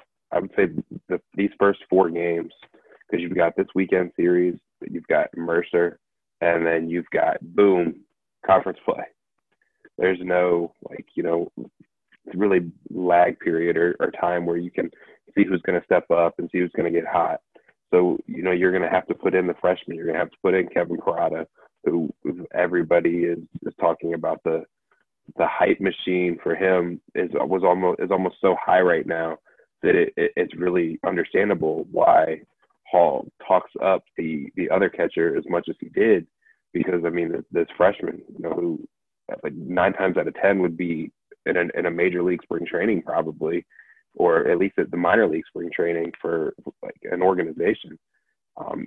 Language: English